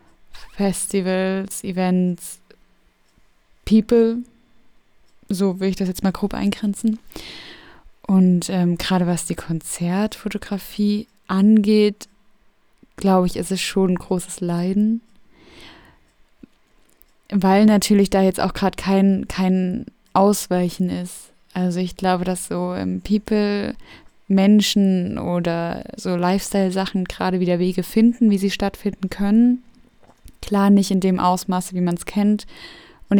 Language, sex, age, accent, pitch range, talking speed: German, female, 20-39, German, 185-210 Hz, 115 wpm